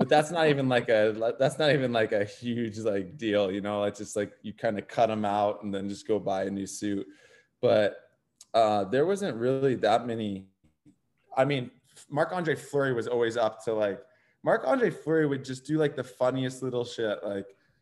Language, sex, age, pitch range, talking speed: English, male, 20-39, 110-140 Hz, 200 wpm